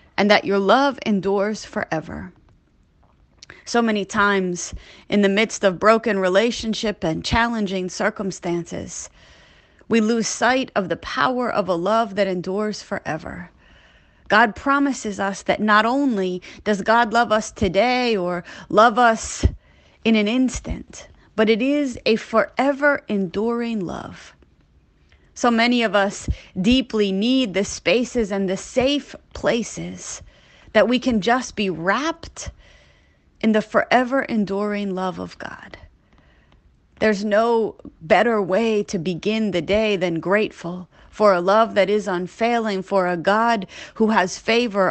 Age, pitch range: 30-49, 185-230 Hz